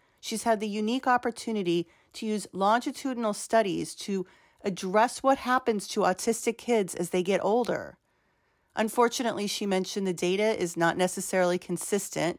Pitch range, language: 185-240 Hz, English